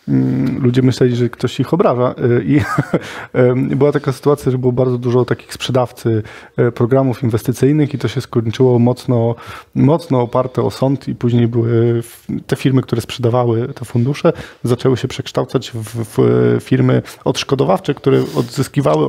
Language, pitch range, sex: Polish, 120-140 Hz, male